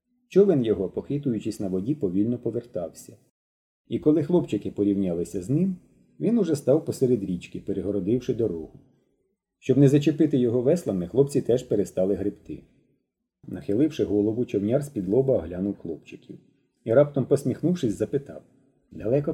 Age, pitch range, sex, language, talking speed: 40-59, 105-150 Hz, male, Ukrainian, 125 wpm